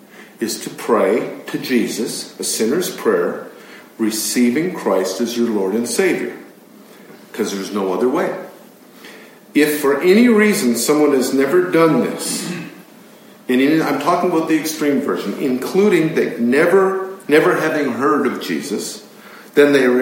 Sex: male